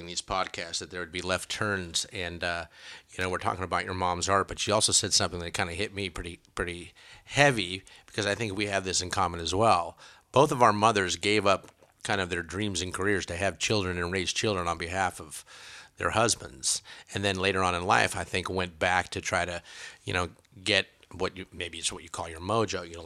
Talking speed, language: 235 wpm, English